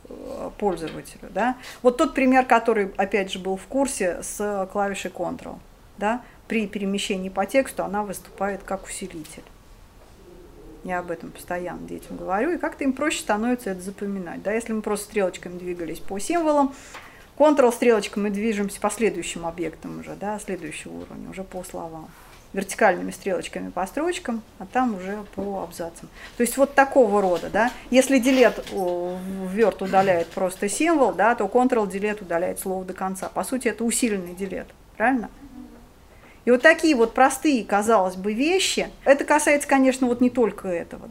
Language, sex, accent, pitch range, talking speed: Russian, female, native, 190-255 Hz, 160 wpm